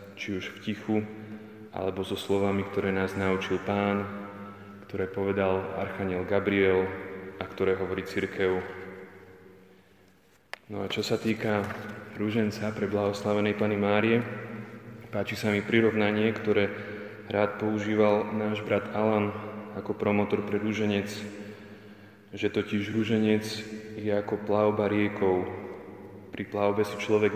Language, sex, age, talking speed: Slovak, male, 20-39, 120 wpm